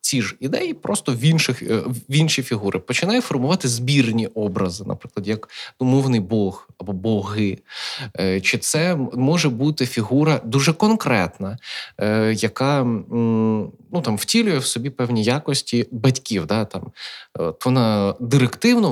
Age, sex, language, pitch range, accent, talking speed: 20-39, male, Ukrainian, 110-145 Hz, native, 125 wpm